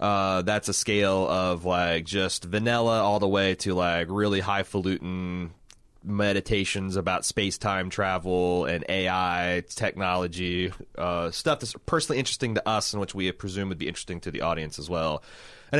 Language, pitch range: English, 90-115 Hz